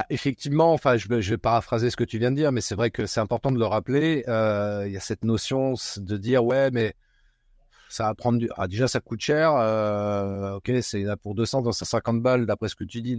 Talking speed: 230 wpm